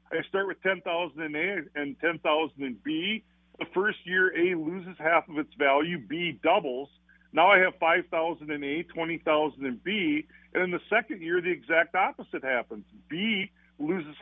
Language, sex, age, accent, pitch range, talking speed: English, male, 50-69, American, 155-195 Hz, 190 wpm